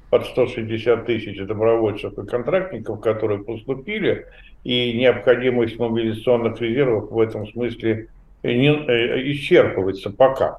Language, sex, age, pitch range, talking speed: Russian, male, 50-69, 115-150 Hz, 110 wpm